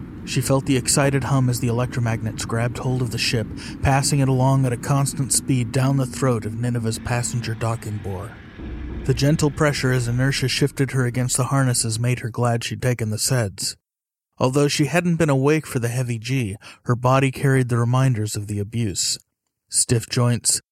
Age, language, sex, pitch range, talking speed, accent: 30-49, English, male, 115-135 Hz, 185 wpm, American